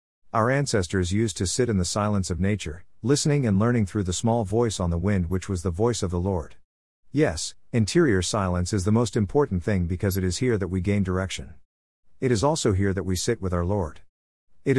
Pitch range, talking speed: 90-115 Hz, 220 wpm